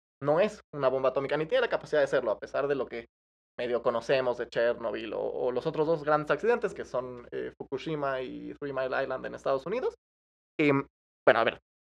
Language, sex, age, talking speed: Spanish, male, 20-39, 215 wpm